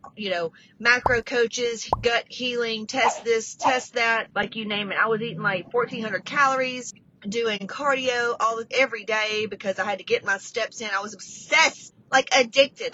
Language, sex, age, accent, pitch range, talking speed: English, female, 30-49, American, 215-275 Hz, 175 wpm